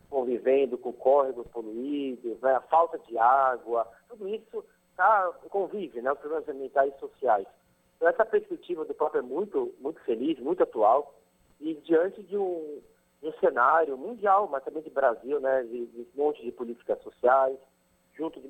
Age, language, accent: 40-59, Portuguese, Brazilian